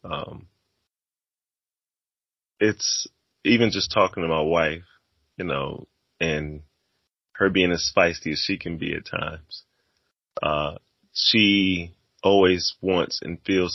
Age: 30-49